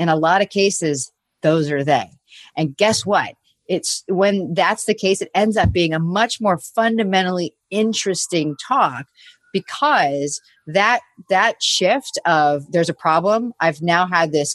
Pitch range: 155-195 Hz